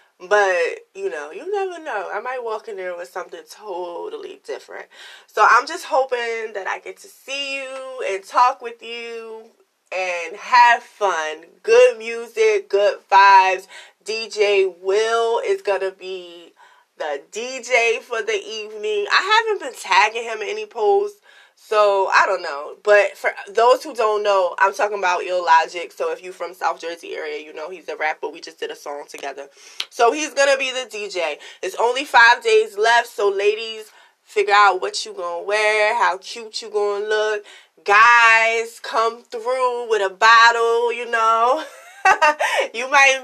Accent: American